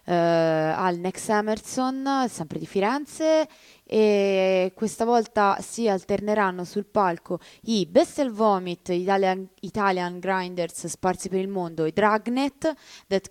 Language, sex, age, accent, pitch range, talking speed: Italian, female, 20-39, native, 170-225 Hz, 125 wpm